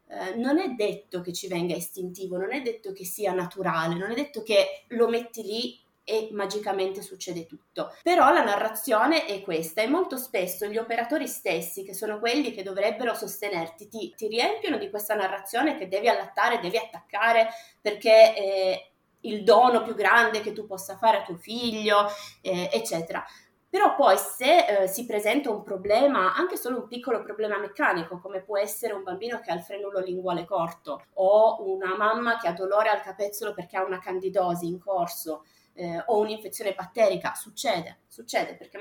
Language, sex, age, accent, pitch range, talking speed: Italian, female, 20-39, native, 190-230 Hz, 175 wpm